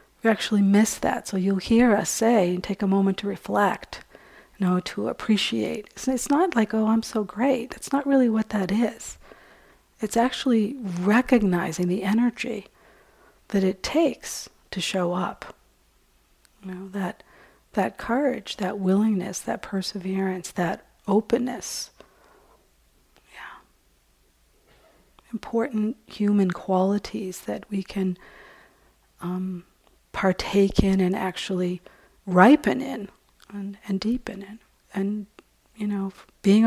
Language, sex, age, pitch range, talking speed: English, female, 50-69, 185-230 Hz, 125 wpm